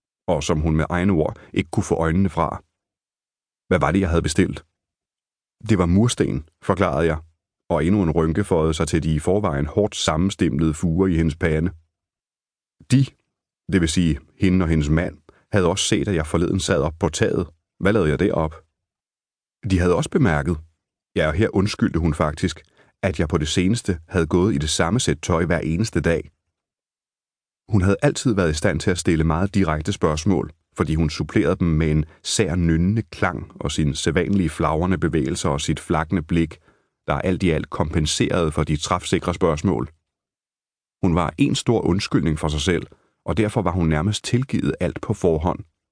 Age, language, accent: 30-49, Danish, native